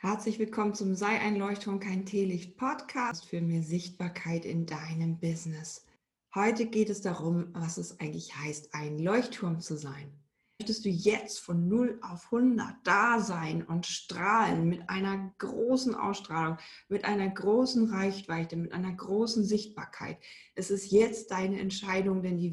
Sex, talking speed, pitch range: female, 150 wpm, 175-210 Hz